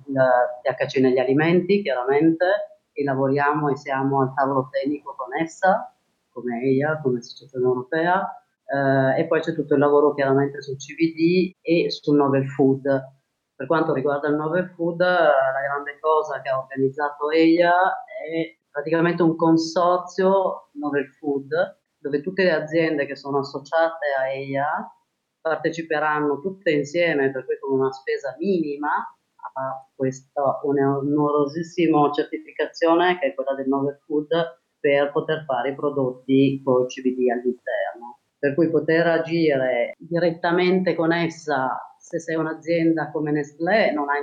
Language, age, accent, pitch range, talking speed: Italian, 30-49, native, 135-165 Hz, 140 wpm